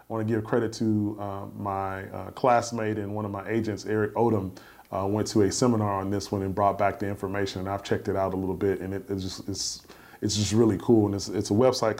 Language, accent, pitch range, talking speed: English, American, 100-115 Hz, 240 wpm